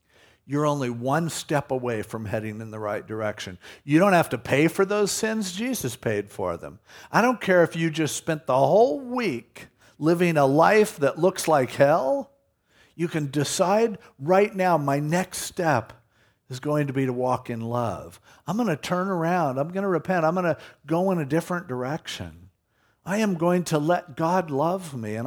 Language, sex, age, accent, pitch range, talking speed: English, male, 50-69, American, 125-185 Hz, 195 wpm